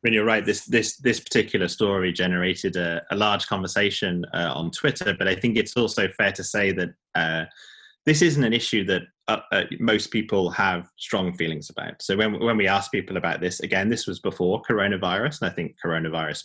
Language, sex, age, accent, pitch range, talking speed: English, male, 20-39, British, 85-120 Hz, 210 wpm